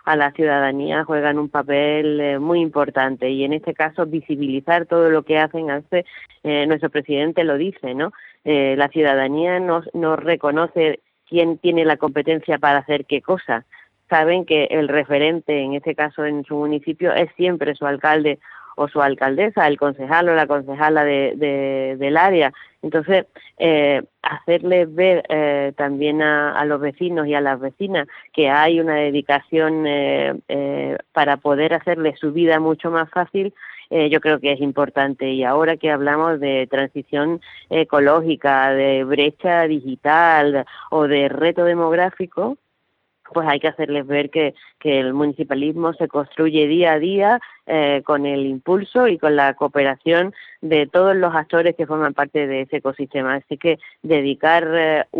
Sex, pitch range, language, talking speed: female, 145-165 Hz, Spanish, 160 wpm